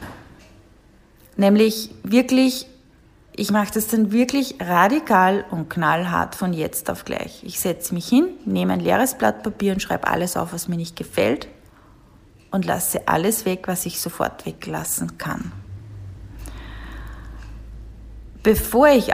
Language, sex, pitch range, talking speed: German, female, 180-230 Hz, 130 wpm